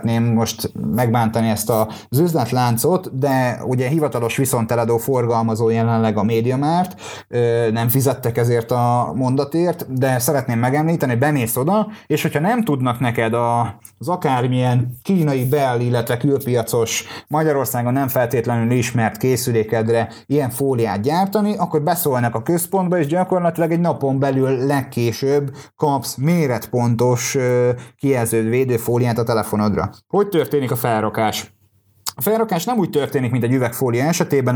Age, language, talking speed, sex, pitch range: 30-49, Hungarian, 125 wpm, male, 115-145 Hz